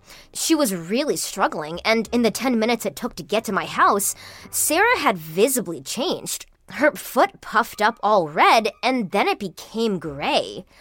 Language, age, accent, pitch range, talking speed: English, 20-39, American, 195-285 Hz, 170 wpm